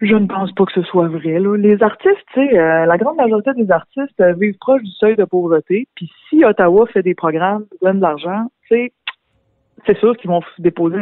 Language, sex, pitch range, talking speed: French, female, 160-215 Hz, 225 wpm